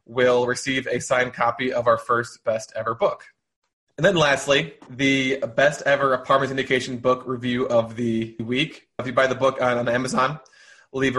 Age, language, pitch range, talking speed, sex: 20-39, English, 125-150 Hz, 175 wpm, male